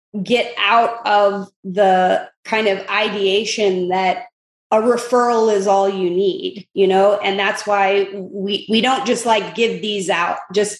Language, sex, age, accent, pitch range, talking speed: English, female, 30-49, American, 195-230 Hz, 155 wpm